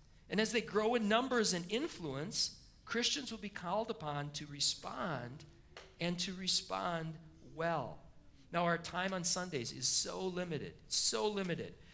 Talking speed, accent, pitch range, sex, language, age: 145 wpm, American, 150-195 Hz, male, English, 40-59